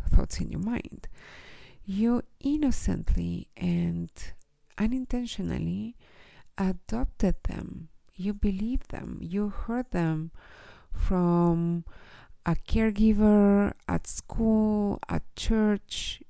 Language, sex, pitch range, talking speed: English, female, 170-220 Hz, 85 wpm